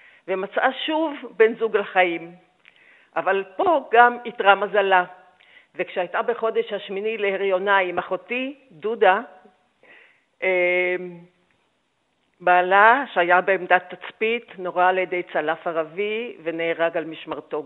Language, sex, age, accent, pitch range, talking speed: Hebrew, female, 50-69, native, 175-220 Hz, 100 wpm